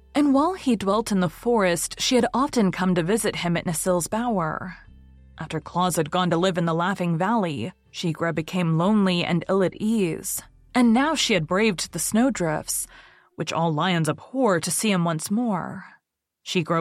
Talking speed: 180 wpm